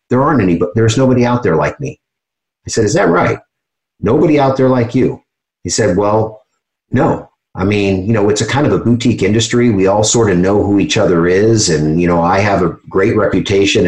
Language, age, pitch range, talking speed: English, 50-69, 90-115 Hz, 220 wpm